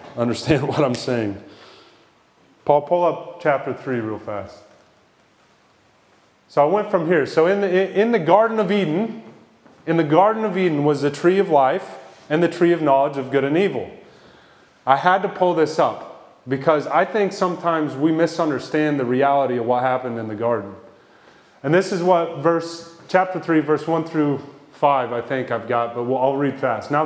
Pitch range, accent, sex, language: 140-175 Hz, American, male, English